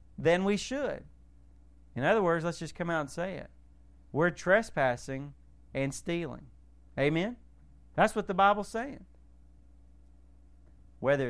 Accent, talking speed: American, 125 wpm